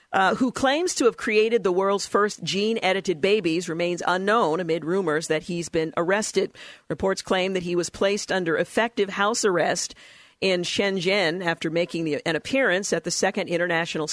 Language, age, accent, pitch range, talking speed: English, 50-69, American, 165-200 Hz, 170 wpm